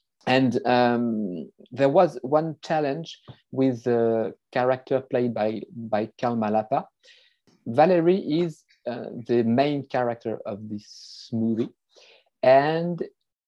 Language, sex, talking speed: English, male, 105 wpm